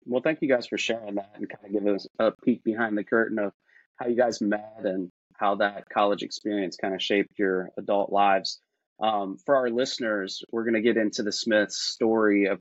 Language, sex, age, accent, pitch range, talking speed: English, male, 30-49, American, 105-125 Hz, 220 wpm